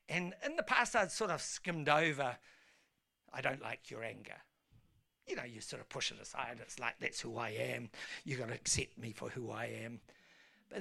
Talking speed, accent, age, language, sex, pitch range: 215 wpm, British, 60-79, English, male, 125-180 Hz